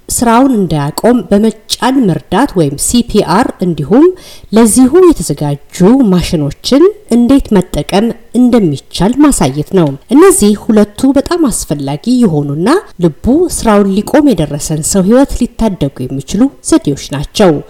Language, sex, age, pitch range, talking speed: Amharic, female, 50-69, 155-250 Hz, 105 wpm